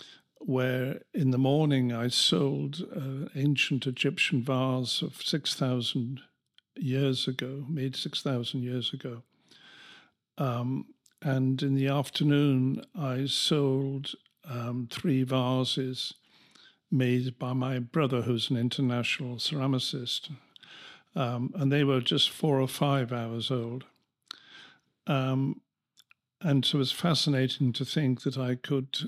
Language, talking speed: English, 120 wpm